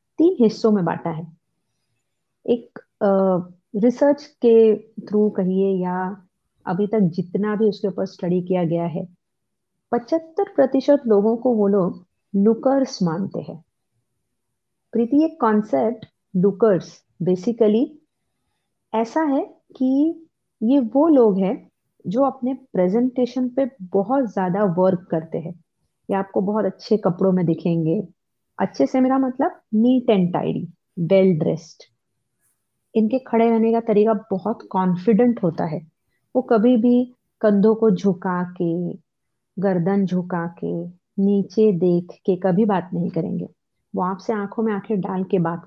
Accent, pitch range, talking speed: native, 180-230 Hz, 135 wpm